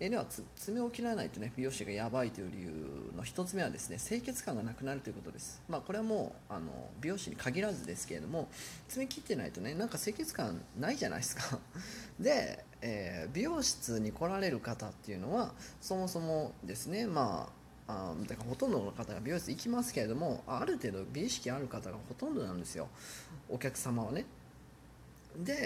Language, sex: Japanese, male